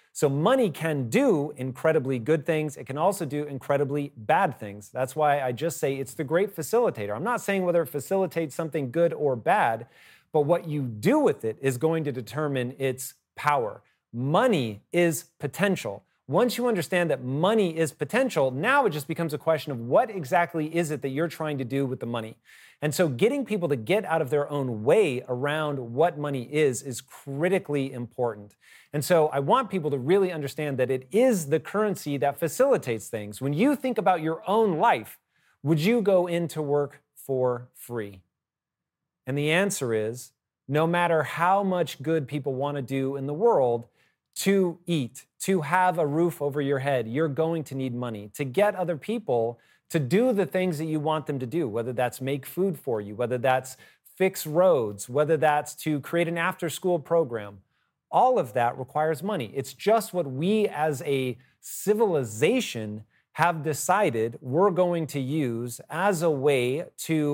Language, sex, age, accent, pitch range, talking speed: English, male, 30-49, American, 135-175 Hz, 180 wpm